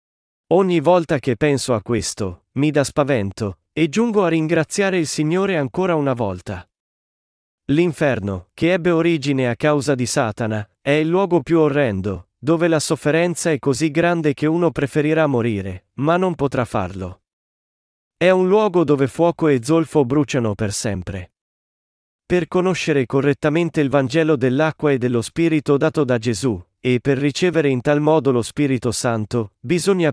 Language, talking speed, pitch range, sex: Italian, 155 wpm, 125-160 Hz, male